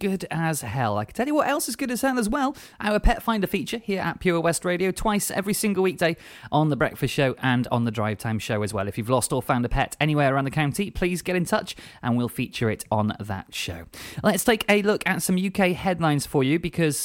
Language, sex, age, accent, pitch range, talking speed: English, male, 30-49, British, 115-160 Hz, 255 wpm